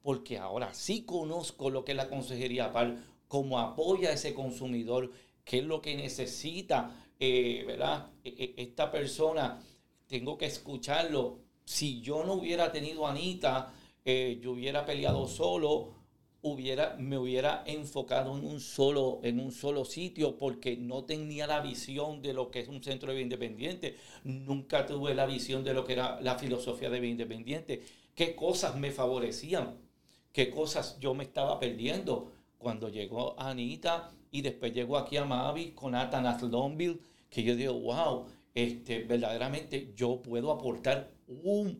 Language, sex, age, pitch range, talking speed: Spanish, male, 50-69, 125-150 Hz, 155 wpm